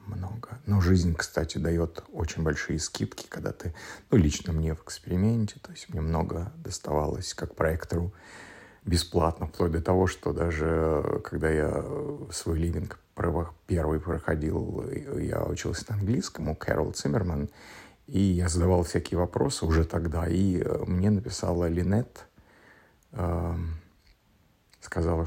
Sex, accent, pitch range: male, native, 85-100 Hz